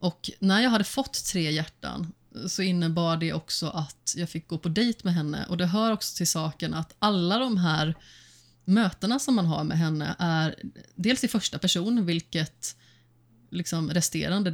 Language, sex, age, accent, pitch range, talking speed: Swedish, female, 30-49, native, 160-195 Hz, 180 wpm